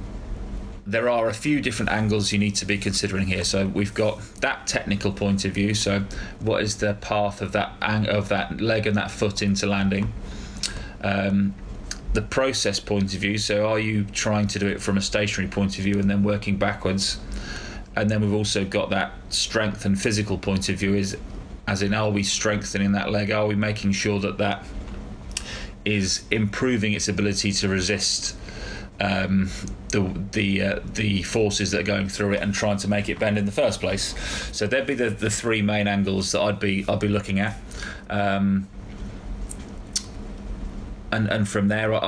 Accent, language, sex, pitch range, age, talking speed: British, English, male, 100-105 Hz, 20-39, 190 wpm